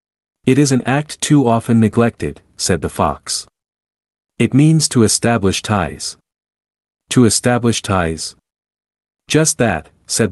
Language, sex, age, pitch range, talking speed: English, male, 50-69, 95-130 Hz, 120 wpm